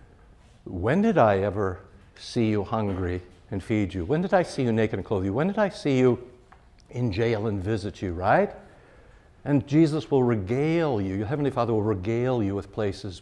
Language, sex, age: English, male, 60-79